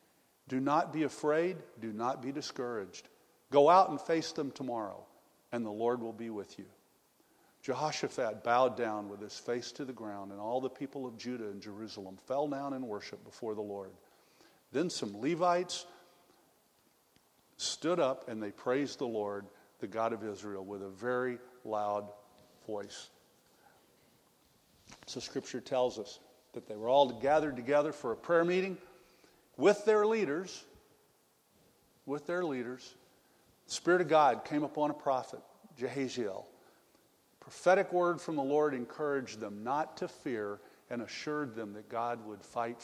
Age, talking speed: 50-69, 155 wpm